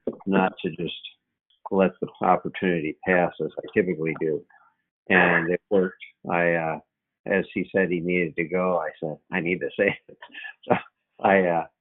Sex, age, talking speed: male, 50-69, 150 wpm